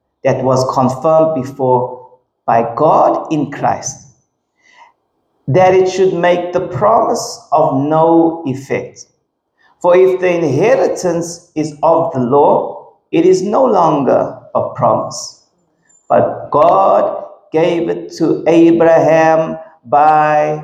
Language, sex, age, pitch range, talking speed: English, male, 50-69, 140-175 Hz, 110 wpm